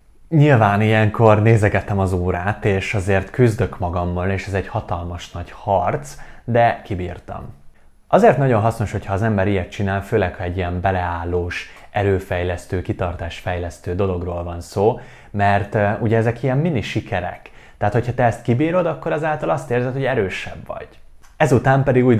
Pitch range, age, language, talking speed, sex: 90-115 Hz, 30-49, Hungarian, 155 wpm, male